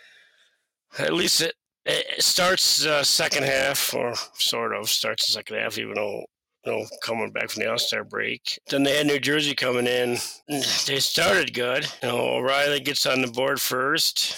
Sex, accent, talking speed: male, American, 165 wpm